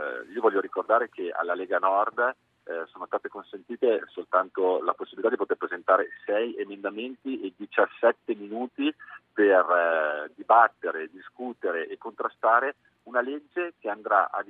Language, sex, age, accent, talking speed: Italian, male, 40-59, native, 130 wpm